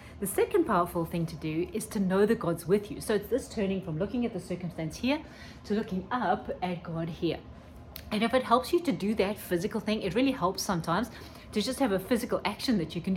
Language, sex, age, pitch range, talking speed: English, female, 30-49, 170-230 Hz, 235 wpm